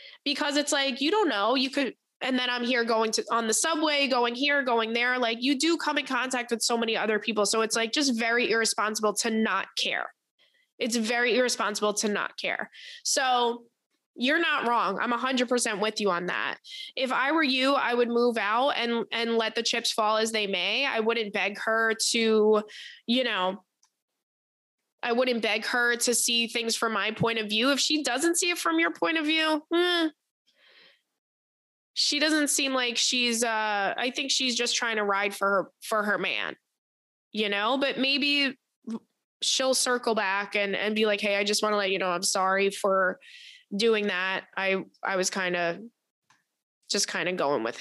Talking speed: 200 wpm